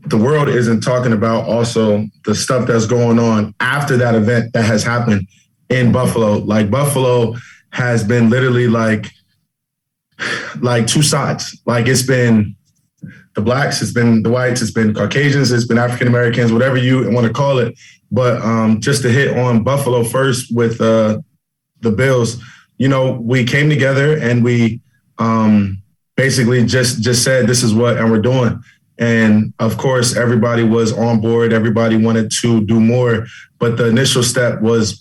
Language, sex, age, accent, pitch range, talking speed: English, male, 20-39, American, 115-130 Hz, 165 wpm